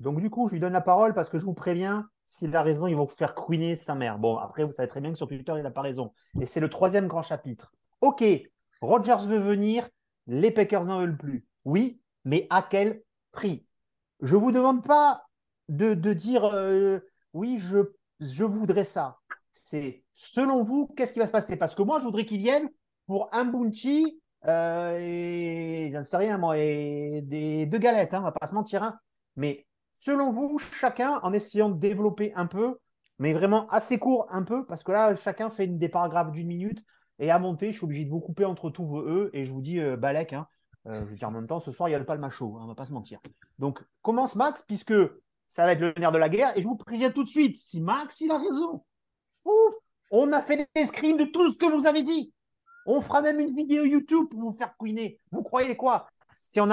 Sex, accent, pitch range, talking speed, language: male, French, 160-240 Hz, 240 wpm, French